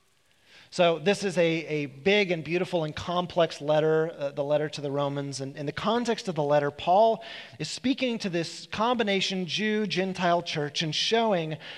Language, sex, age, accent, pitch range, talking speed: English, male, 30-49, American, 165-210 Hz, 175 wpm